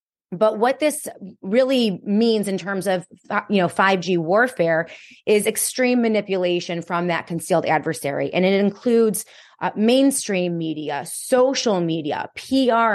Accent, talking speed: American, 130 wpm